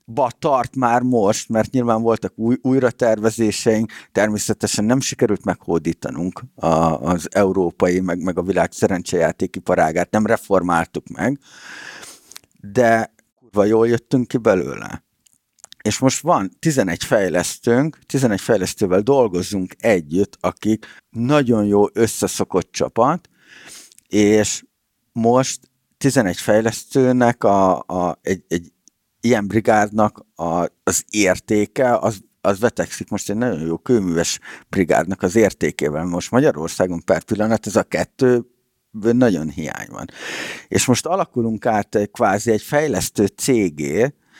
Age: 50-69